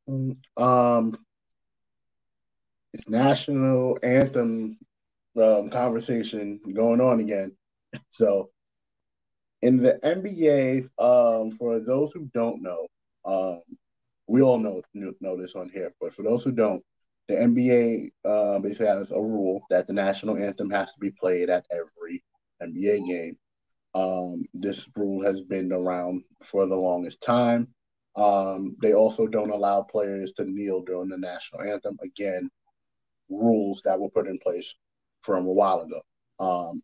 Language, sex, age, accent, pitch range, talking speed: English, male, 20-39, American, 95-120 Hz, 140 wpm